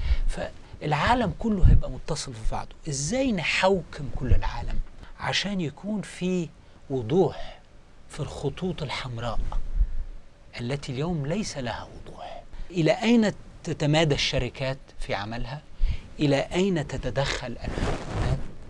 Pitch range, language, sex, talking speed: 115-170 Hz, Arabic, male, 105 wpm